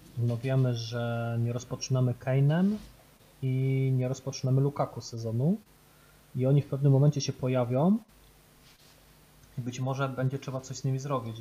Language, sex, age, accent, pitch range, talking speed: Polish, male, 20-39, native, 120-140 Hz, 140 wpm